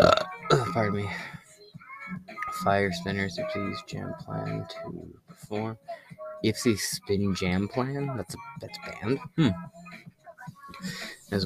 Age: 20-39